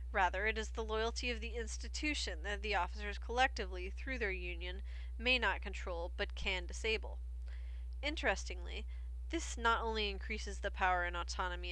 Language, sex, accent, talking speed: English, female, American, 155 wpm